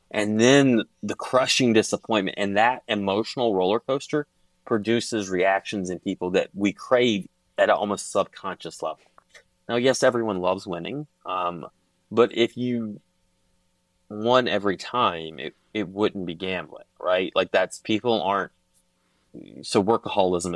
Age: 30-49